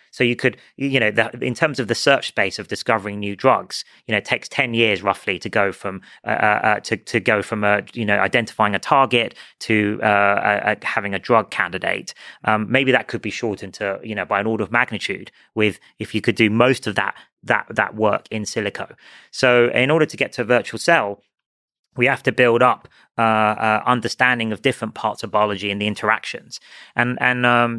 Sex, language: male, English